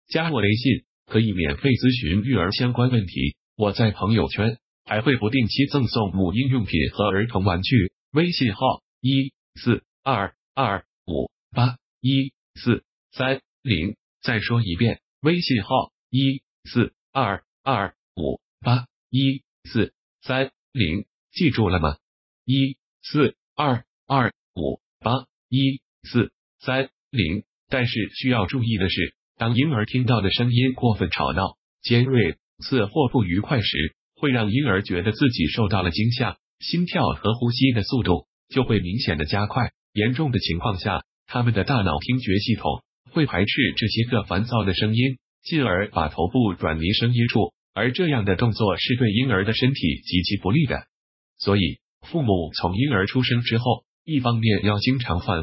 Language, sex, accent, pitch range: Chinese, male, native, 100-130 Hz